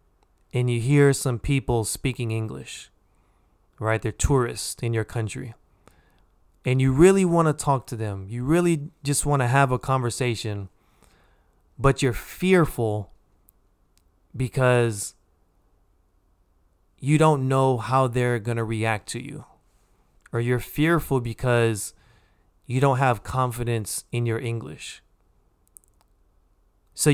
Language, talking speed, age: English, 120 wpm, 30-49